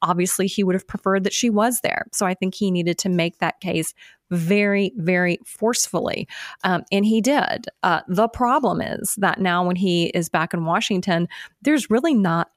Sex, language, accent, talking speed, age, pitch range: female, English, American, 190 wpm, 30-49, 170-195 Hz